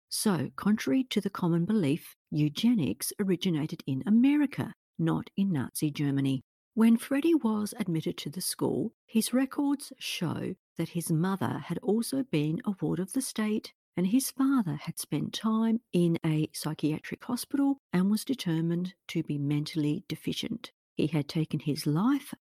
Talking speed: 155 wpm